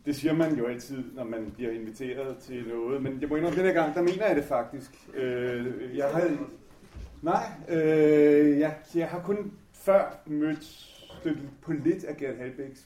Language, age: Danish, 30-49